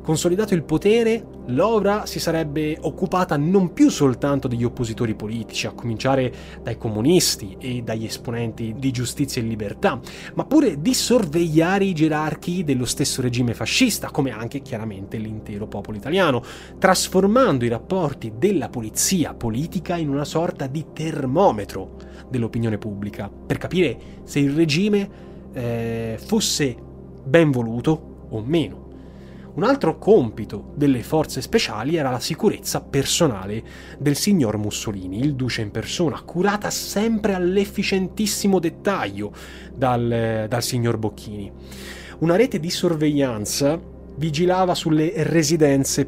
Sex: male